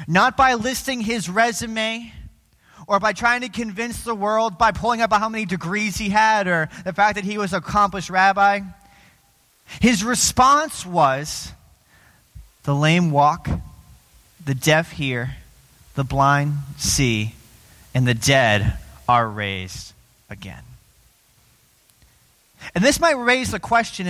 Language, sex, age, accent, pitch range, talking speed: English, male, 30-49, American, 140-215 Hz, 135 wpm